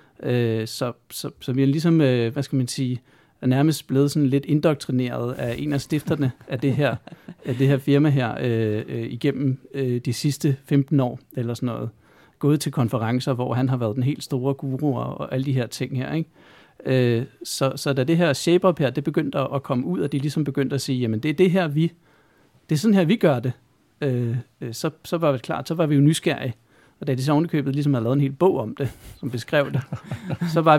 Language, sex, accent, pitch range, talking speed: Danish, male, native, 130-155 Hz, 220 wpm